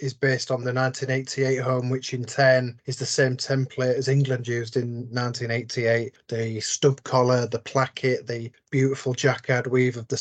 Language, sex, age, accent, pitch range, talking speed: English, male, 20-39, British, 125-135 Hz, 170 wpm